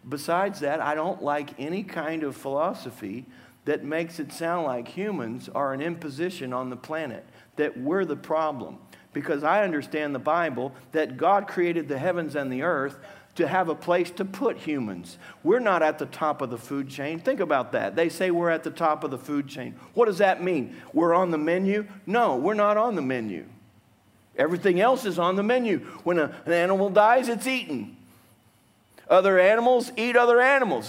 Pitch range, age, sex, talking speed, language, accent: 135-195 Hz, 50-69, male, 190 wpm, English, American